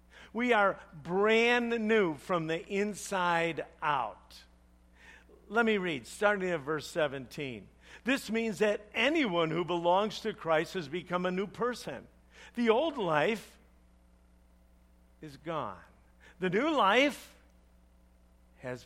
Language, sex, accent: English, male, American